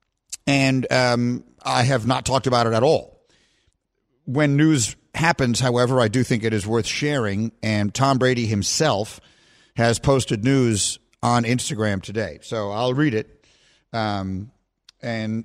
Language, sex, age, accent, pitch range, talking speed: English, male, 50-69, American, 115-140 Hz, 145 wpm